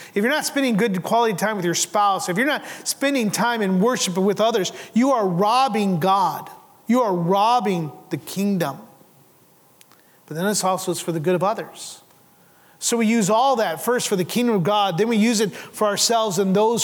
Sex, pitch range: male, 190-225 Hz